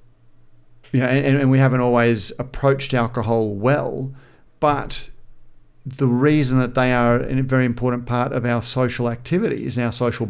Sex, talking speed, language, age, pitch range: male, 150 wpm, English, 50-69, 120-135 Hz